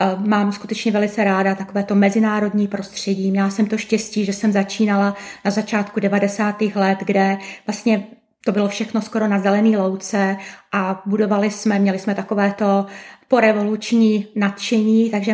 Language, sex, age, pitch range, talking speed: Czech, female, 30-49, 210-240 Hz, 140 wpm